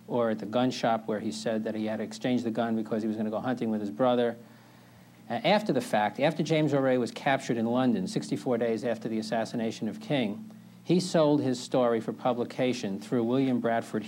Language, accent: English, American